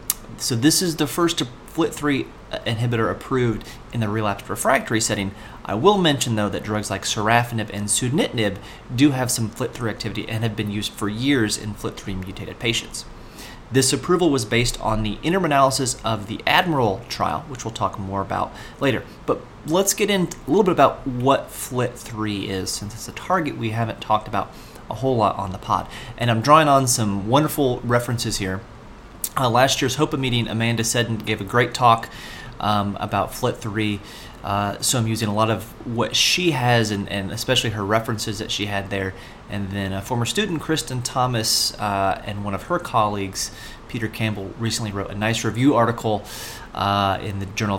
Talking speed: 185 wpm